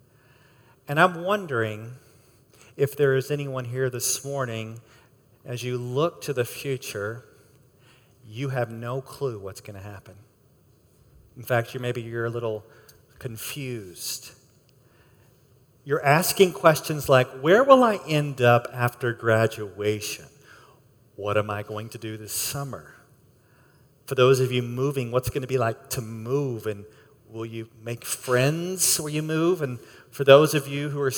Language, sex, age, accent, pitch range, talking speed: English, male, 40-59, American, 120-145 Hz, 150 wpm